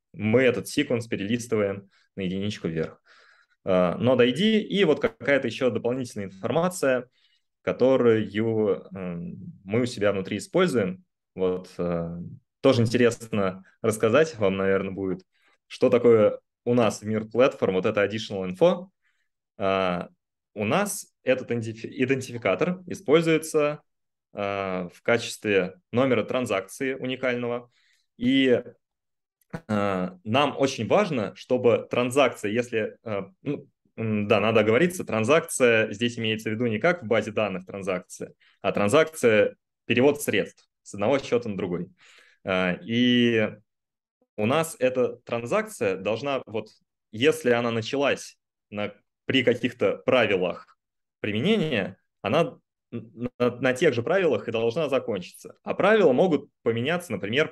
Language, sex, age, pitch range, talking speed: Russian, male, 20-39, 100-145 Hz, 115 wpm